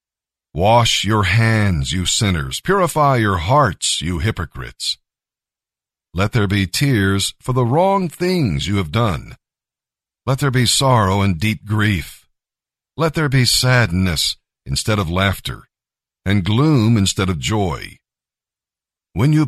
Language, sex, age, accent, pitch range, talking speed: English, male, 50-69, American, 95-125 Hz, 130 wpm